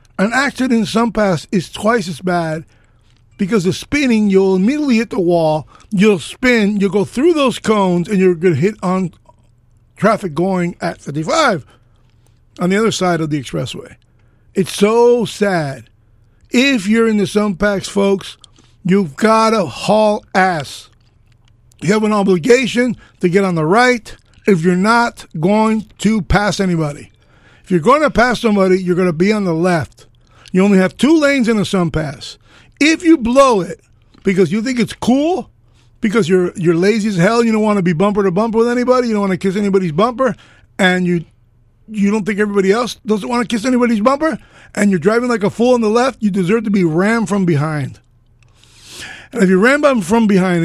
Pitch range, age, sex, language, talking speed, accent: 150-220 Hz, 50-69, male, English, 190 wpm, American